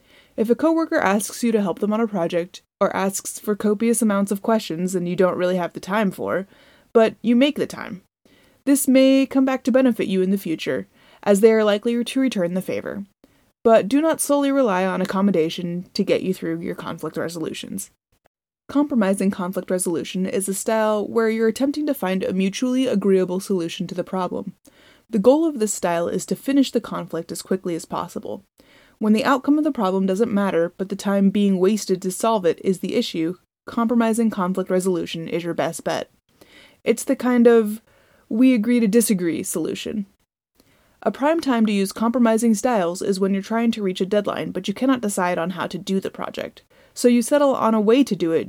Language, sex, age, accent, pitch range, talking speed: English, female, 20-39, American, 185-240 Hz, 205 wpm